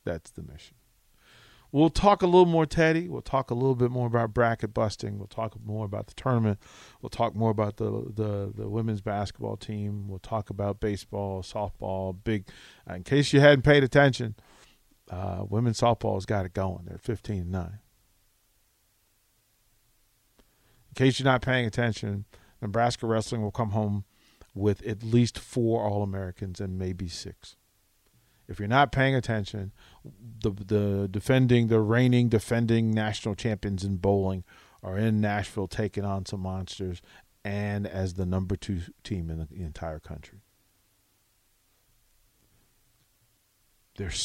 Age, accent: 40-59, American